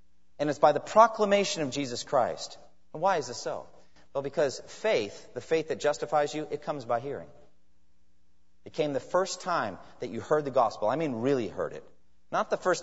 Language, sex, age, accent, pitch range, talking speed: English, male, 40-59, American, 115-170 Hz, 200 wpm